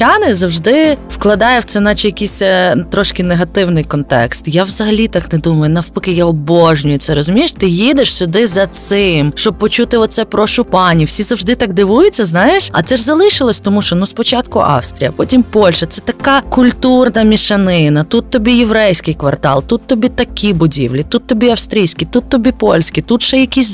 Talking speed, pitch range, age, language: 165 wpm, 175-240 Hz, 20-39, Ukrainian